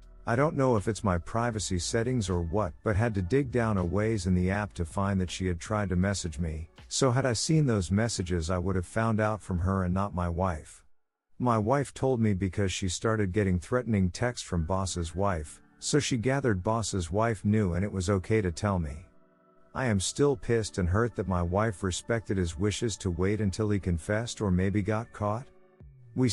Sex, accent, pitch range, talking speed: male, American, 90-115 Hz, 215 wpm